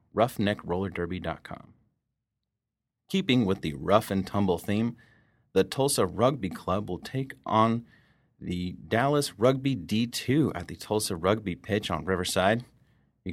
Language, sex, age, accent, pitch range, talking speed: English, male, 30-49, American, 95-125 Hz, 120 wpm